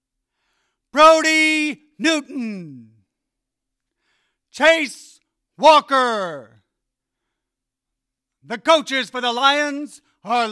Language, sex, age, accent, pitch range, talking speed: English, male, 50-69, American, 185-310 Hz, 55 wpm